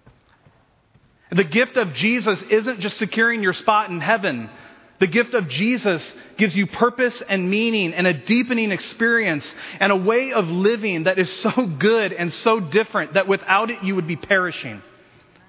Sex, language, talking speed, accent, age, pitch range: male, English, 165 wpm, American, 40-59, 185-225 Hz